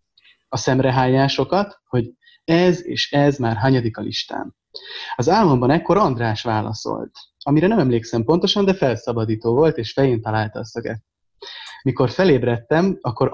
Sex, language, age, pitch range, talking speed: male, Hungarian, 30-49, 115-150 Hz, 135 wpm